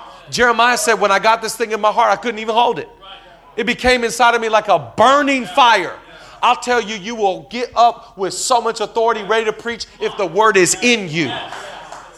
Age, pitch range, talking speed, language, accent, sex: 40-59, 185-230 Hz, 215 wpm, English, American, male